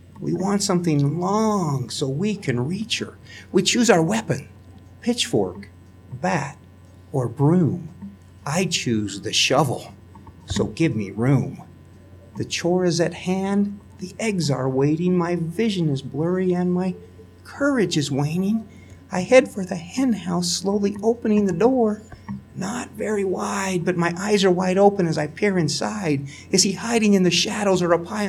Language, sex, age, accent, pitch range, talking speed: English, male, 50-69, American, 120-190 Hz, 160 wpm